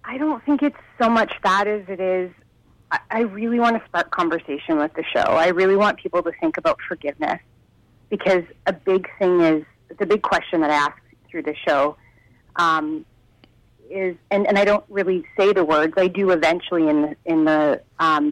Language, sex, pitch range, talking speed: English, female, 155-195 Hz, 195 wpm